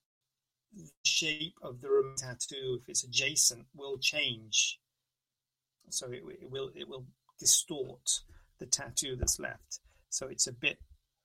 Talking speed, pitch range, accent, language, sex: 140 wpm, 120-135 Hz, British, English, male